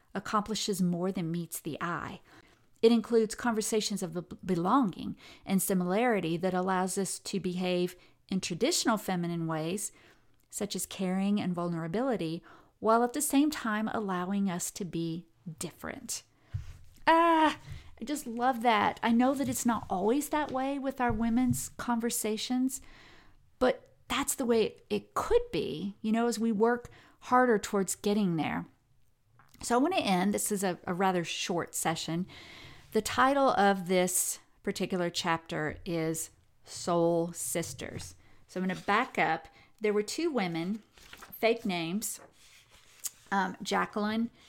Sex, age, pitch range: female, 40-59, 175-235 Hz